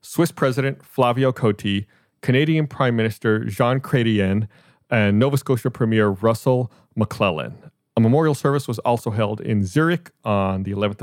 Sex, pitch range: male, 100-125 Hz